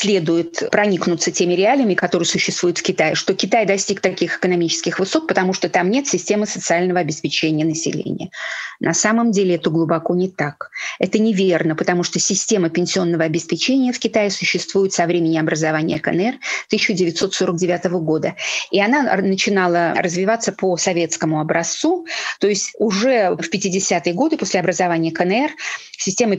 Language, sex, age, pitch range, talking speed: Russian, female, 30-49, 175-215 Hz, 140 wpm